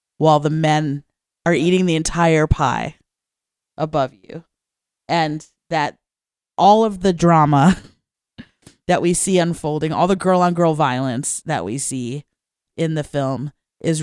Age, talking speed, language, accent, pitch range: 30-49, 140 wpm, English, American, 145-170 Hz